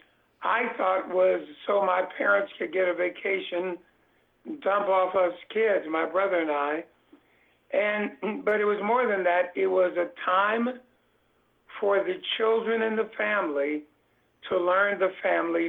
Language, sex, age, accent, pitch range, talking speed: English, male, 60-79, American, 180-205 Hz, 155 wpm